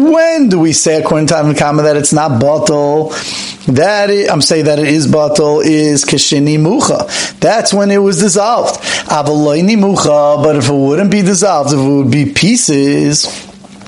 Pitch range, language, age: 150-190 Hz, English, 40-59